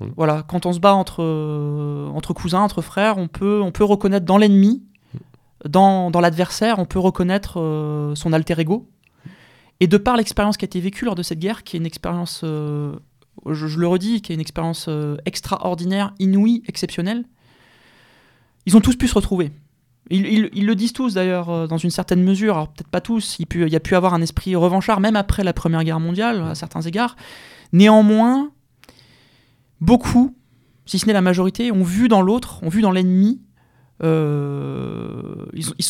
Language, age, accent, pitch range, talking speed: French, 20-39, French, 155-200 Hz, 190 wpm